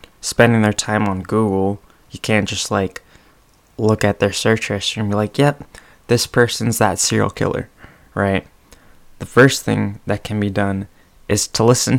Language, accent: English, American